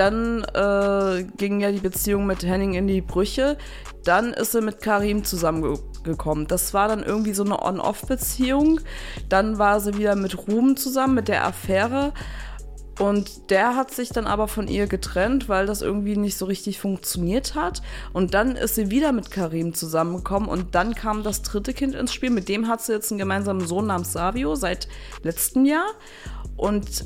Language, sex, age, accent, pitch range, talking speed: German, female, 20-39, German, 185-225 Hz, 180 wpm